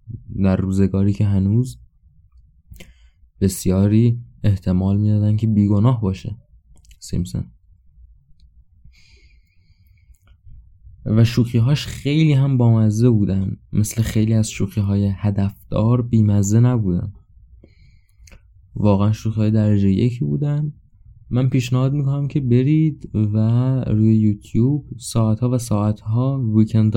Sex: male